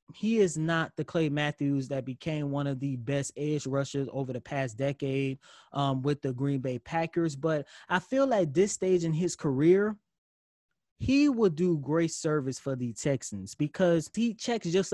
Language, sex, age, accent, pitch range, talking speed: English, male, 20-39, American, 140-180 Hz, 180 wpm